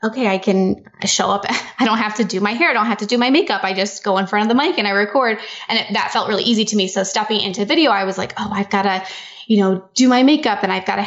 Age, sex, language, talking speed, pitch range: 10-29, female, English, 315 wpm, 195-230 Hz